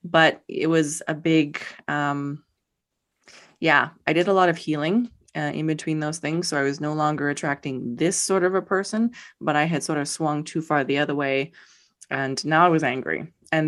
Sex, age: female, 20-39